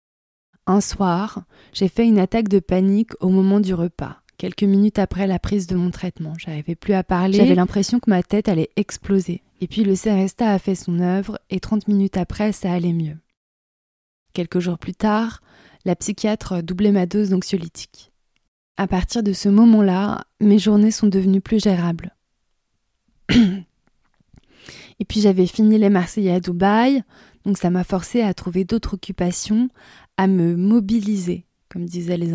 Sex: female